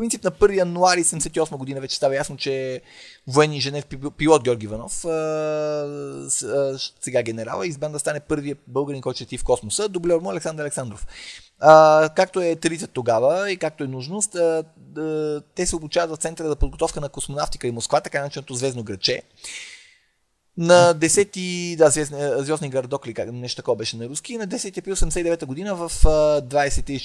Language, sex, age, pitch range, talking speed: Bulgarian, male, 30-49, 140-175 Hz, 160 wpm